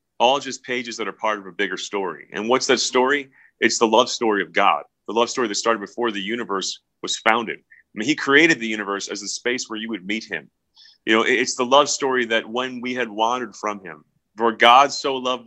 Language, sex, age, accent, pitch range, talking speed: English, male, 30-49, American, 110-140 Hz, 235 wpm